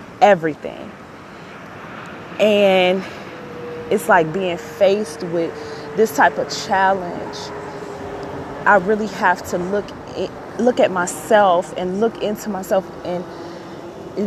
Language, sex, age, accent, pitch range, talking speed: English, female, 20-39, American, 165-195 Hz, 105 wpm